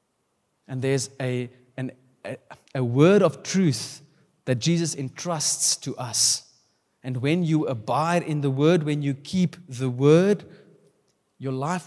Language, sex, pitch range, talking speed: English, male, 125-155 Hz, 140 wpm